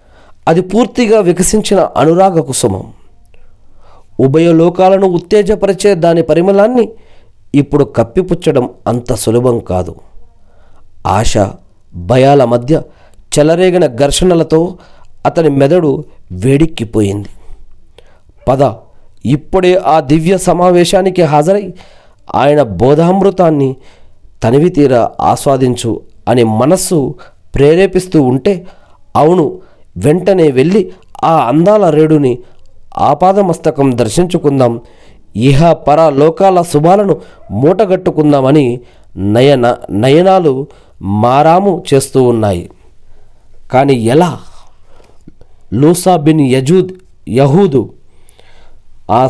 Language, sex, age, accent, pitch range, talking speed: Telugu, male, 40-59, native, 110-170 Hz, 75 wpm